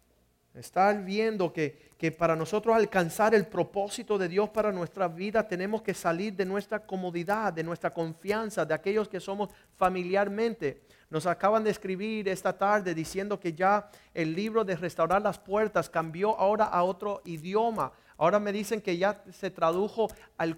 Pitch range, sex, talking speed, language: 180-225 Hz, male, 165 wpm, Spanish